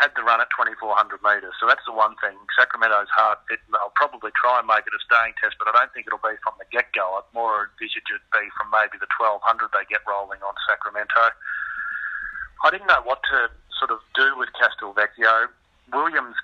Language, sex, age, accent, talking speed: English, male, 40-59, Australian, 205 wpm